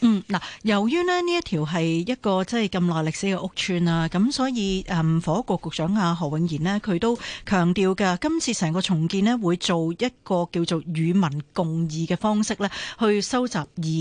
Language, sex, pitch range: Chinese, female, 170-225 Hz